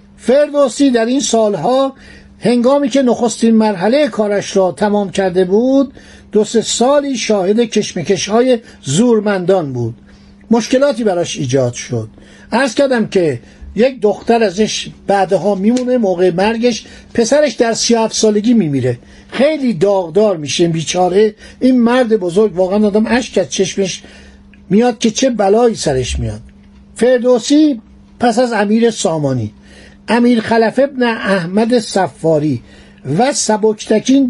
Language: Persian